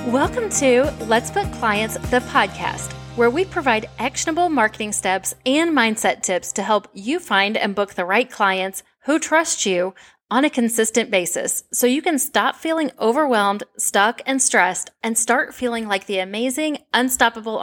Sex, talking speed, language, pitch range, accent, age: female, 165 wpm, English, 190-255 Hz, American, 30-49